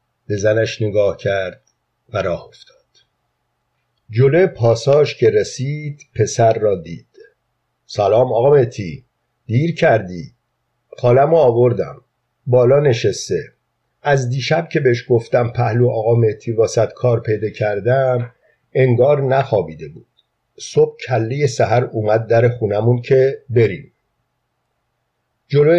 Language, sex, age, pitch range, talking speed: Persian, male, 50-69, 115-145 Hz, 105 wpm